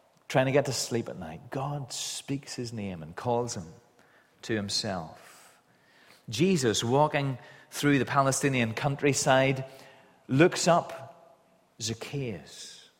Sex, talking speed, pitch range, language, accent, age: male, 115 wpm, 115-155 Hz, English, British, 30-49